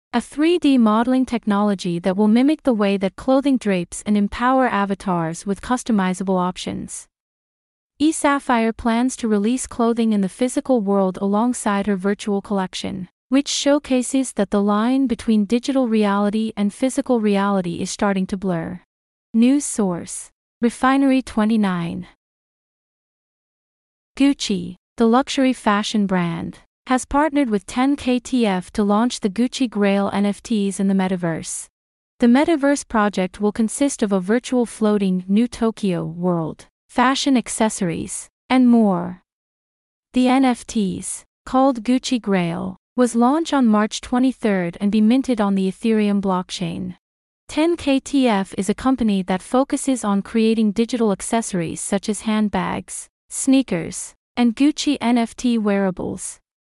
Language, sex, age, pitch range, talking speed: English, female, 30-49, 195-255 Hz, 125 wpm